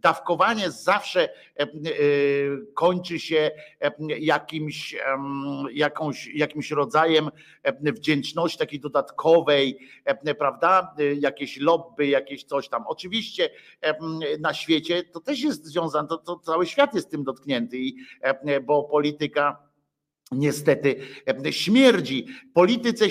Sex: male